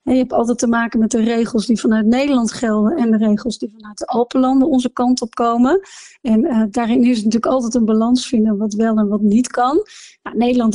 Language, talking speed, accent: Dutch, 220 wpm, Dutch